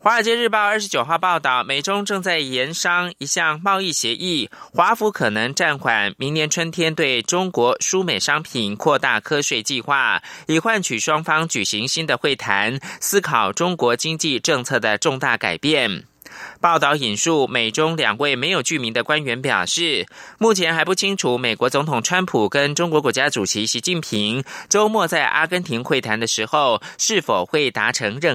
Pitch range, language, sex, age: 120-175 Hz, German, male, 20-39